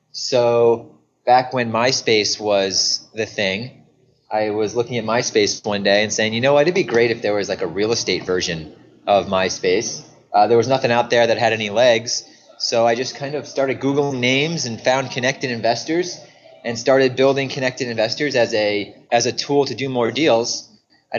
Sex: male